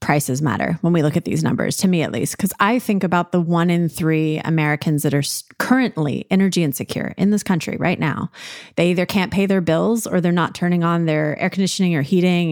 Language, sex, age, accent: English, female, 30-49, American